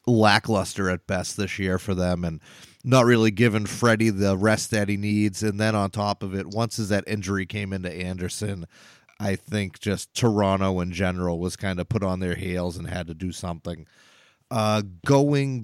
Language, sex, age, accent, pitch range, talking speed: English, male, 30-49, American, 100-120 Hz, 190 wpm